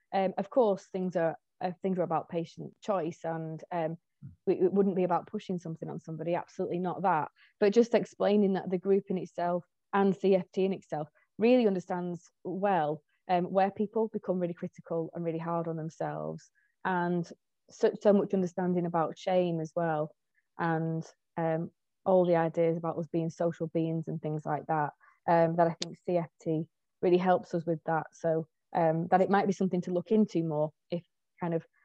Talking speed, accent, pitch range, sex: 185 wpm, British, 170-195 Hz, female